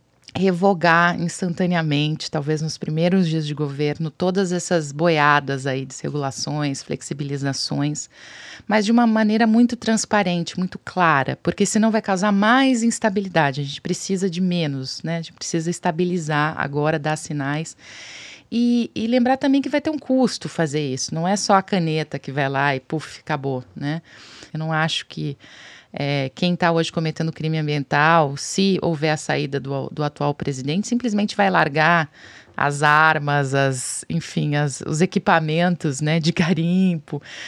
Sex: female